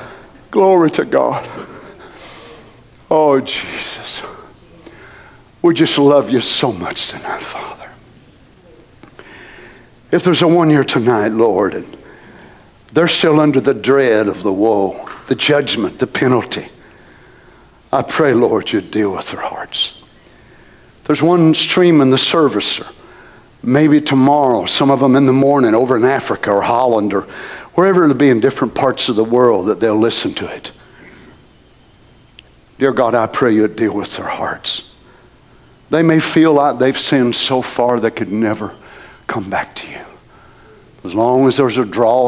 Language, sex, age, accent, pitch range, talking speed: English, male, 60-79, American, 120-155 Hz, 150 wpm